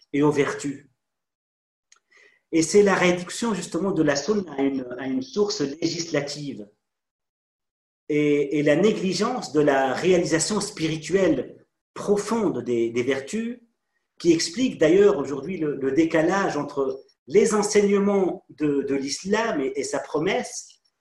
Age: 50-69